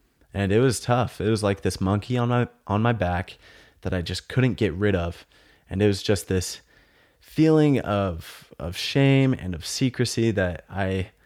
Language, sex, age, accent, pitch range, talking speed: English, male, 20-39, American, 90-110 Hz, 185 wpm